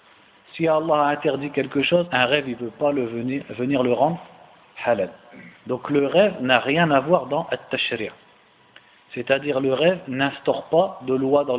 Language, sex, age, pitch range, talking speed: French, male, 50-69, 120-145 Hz, 180 wpm